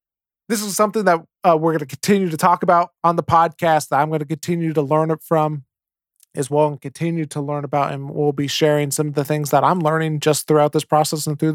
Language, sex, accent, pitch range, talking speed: English, male, American, 150-170 Hz, 250 wpm